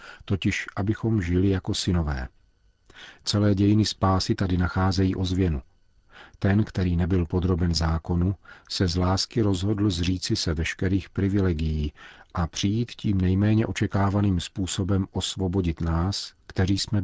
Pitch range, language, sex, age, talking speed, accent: 85-100 Hz, Czech, male, 40-59, 120 wpm, native